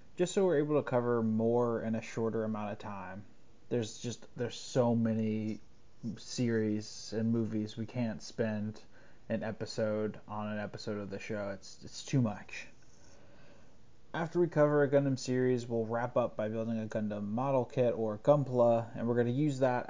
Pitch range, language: 110-130 Hz, English